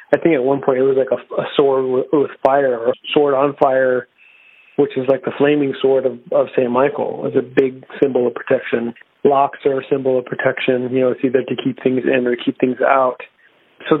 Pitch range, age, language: 130-145 Hz, 40-59, English